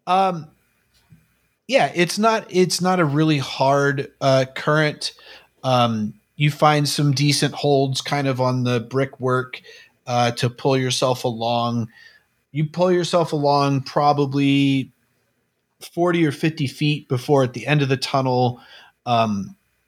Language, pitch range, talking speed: English, 115-145 Hz, 135 wpm